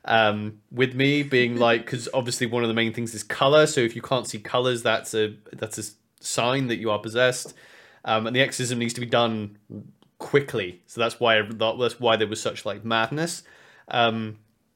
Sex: male